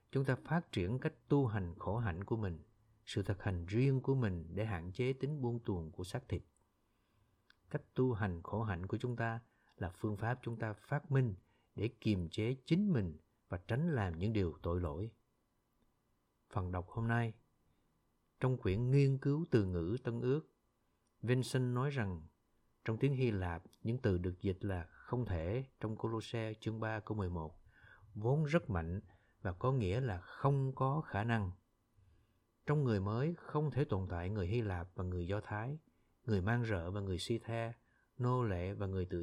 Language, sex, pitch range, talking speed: Vietnamese, male, 100-130 Hz, 190 wpm